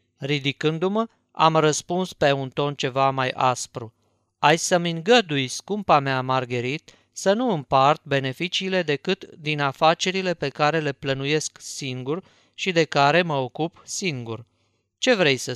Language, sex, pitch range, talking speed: Romanian, male, 130-175 Hz, 140 wpm